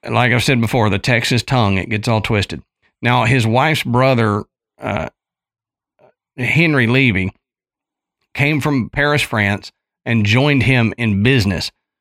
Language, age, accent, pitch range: English, 50-69, American, 110-130 Hz